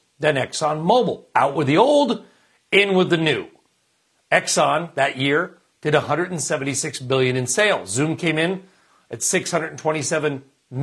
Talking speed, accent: 125 wpm, American